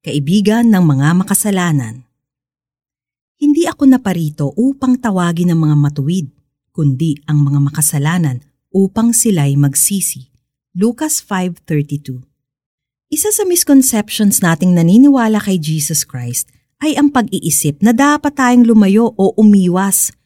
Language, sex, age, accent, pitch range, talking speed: Filipino, female, 40-59, native, 155-250 Hz, 115 wpm